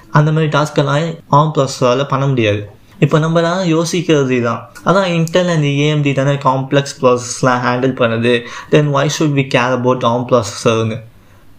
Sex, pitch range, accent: male, 125-150 Hz, native